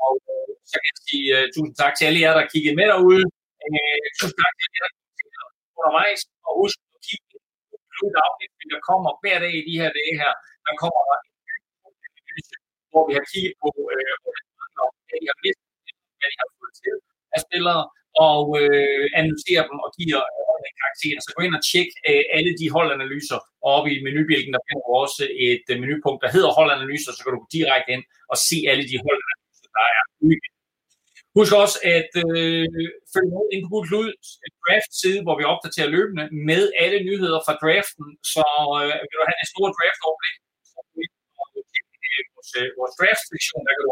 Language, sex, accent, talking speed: Danish, male, native, 190 wpm